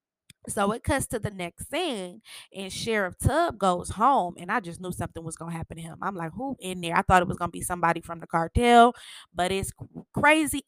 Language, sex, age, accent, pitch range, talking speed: English, female, 20-39, American, 175-210 Hz, 225 wpm